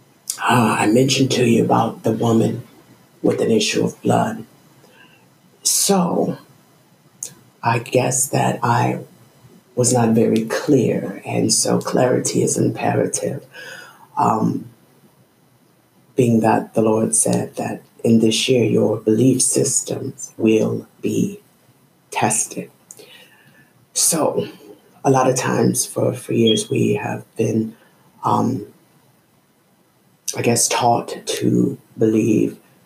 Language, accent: English, American